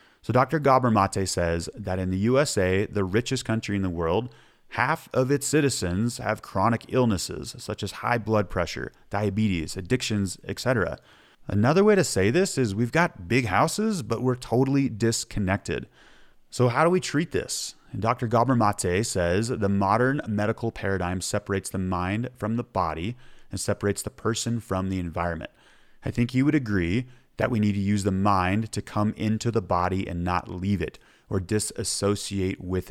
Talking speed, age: 175 wpm, 30-49